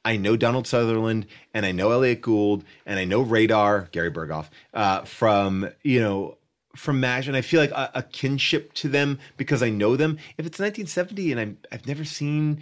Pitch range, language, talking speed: 115-165 Hz, English, 200 wpm